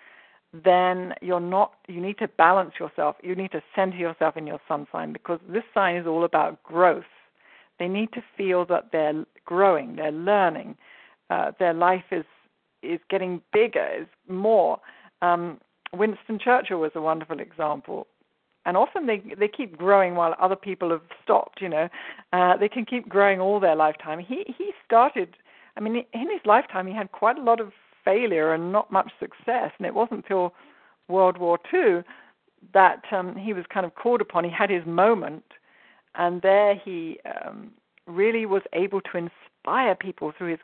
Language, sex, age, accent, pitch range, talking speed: English, female, 50-69, British, 170-210 Hz, 175 wpm